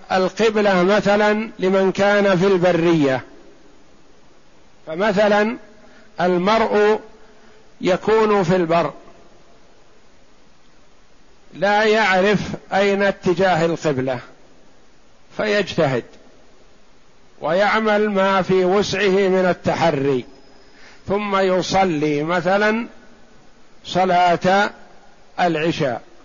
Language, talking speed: Arabic, 65 wpm